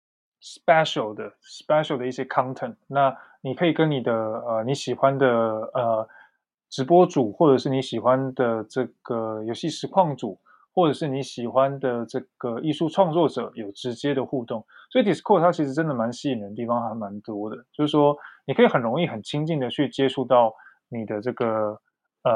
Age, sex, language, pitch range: 20-39, male, Chinese, 120-155 Hz